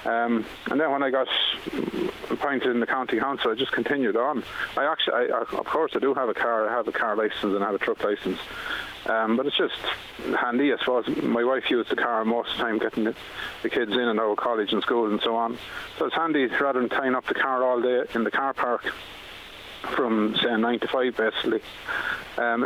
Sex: male